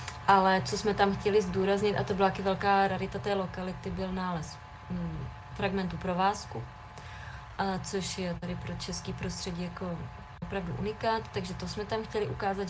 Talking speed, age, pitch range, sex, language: 160 wpm, 20-39, 180-200 Hz, female, Slovak